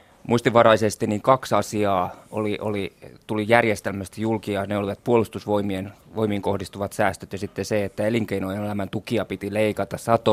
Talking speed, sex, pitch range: 140 wpm, male, 100-115 Hz